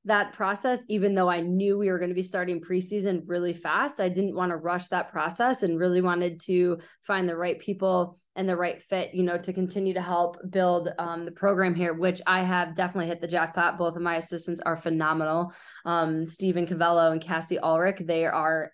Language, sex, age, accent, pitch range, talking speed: English, female, 20-39, American, 175-200 Hz, 210 wpm